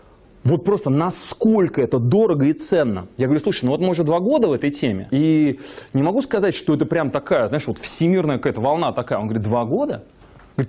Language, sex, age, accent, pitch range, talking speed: Russian, male, 30-49, native, 125-195 Hz, 215 wpm